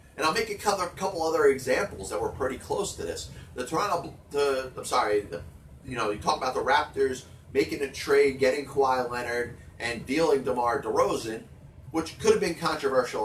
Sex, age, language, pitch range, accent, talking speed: male, 30-49, English, 125-165 Hz, American, 175 wpm